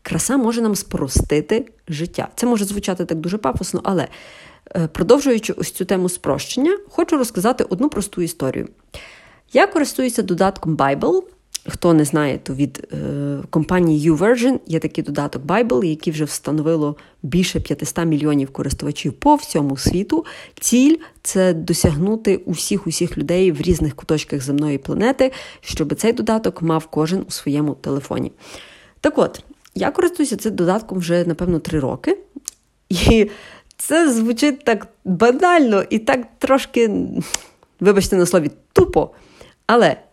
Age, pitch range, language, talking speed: 30-49, 160-235 Hz, Ukrainian, 135 wpm